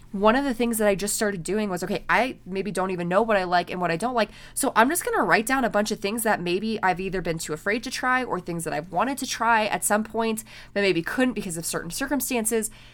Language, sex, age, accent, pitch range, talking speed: English, female, 20-39, American, 180-245 Hz, 285 wpm